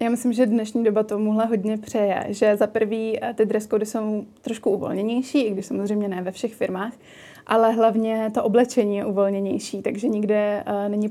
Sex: female